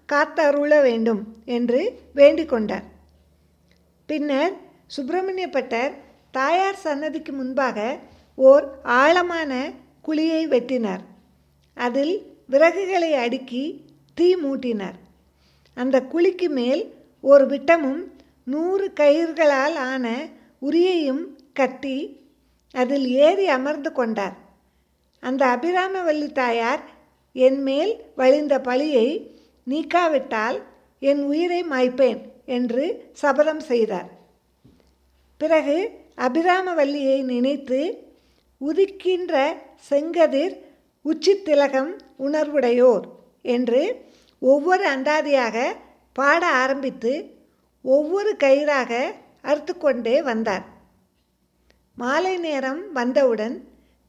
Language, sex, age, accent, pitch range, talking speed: Tamil, female, 50-69, native, 255-320 Hz, 75 wpm